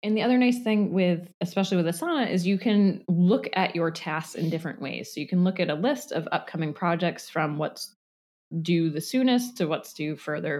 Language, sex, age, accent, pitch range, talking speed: English, female, 20-39, American, 155-195 Hz, 215 wpm